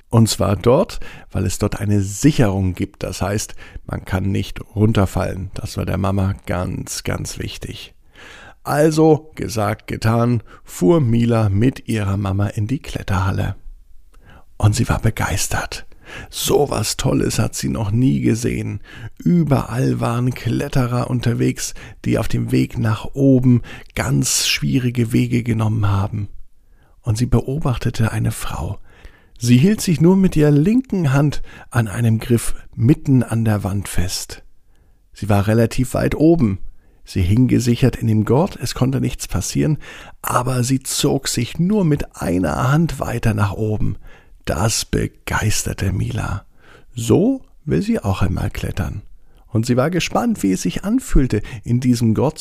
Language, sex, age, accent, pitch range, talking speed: German, male, 50-69, German, 100-125 Hz, 145 wpm